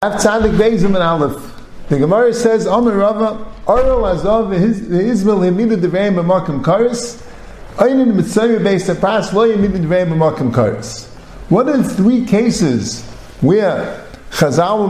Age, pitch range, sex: 50-69, 170-215 Hz, male